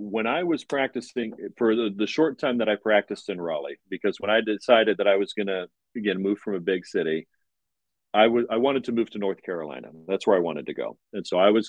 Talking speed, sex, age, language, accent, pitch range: 240 wpm, male, 40-59, English, American, 100-125 Hz